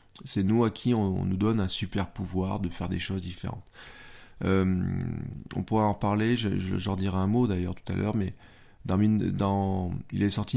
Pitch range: 95-110 Hz